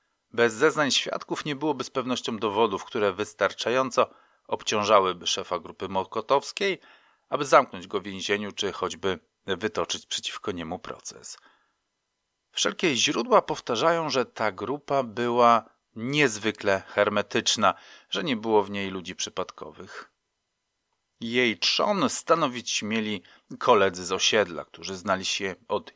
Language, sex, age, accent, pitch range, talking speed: Polish, male, 40-59, native, 105-130 Hz, 120 wpm